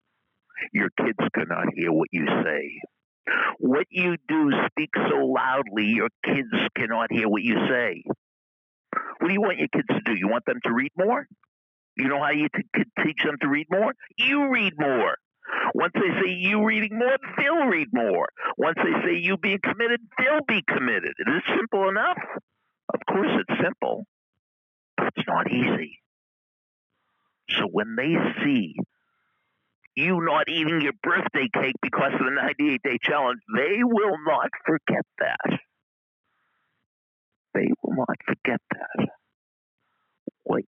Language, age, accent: English, 60-79, American